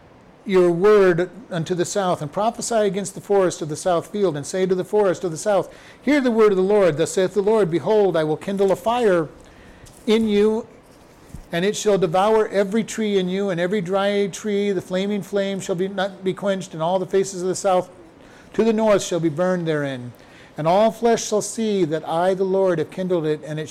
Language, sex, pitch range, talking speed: English, male, 170-200 Hz, 225 wpm